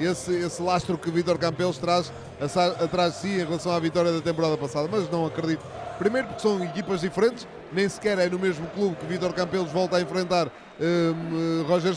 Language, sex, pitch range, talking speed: Portuguese, male, 165-195 Hz, 205 wpm